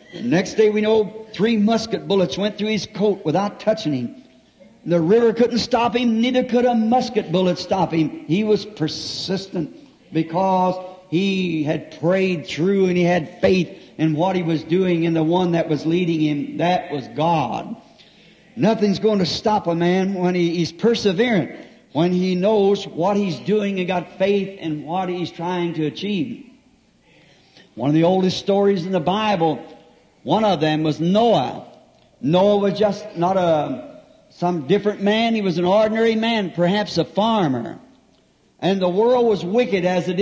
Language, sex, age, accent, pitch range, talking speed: English, male, 60-79, American, 170-215 Hz, 170 wpm